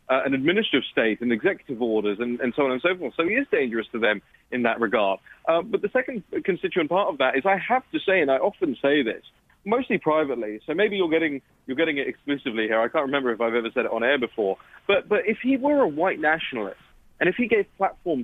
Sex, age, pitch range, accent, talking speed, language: male, 30-49, 125-195 Hz, British, 250 wpm, English